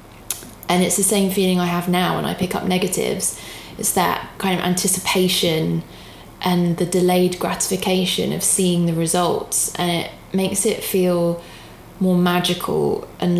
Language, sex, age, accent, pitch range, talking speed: English, female, 20-39, British, 170-190 Hz, 150 wpm